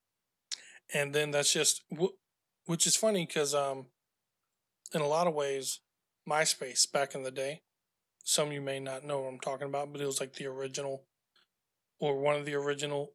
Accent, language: American, English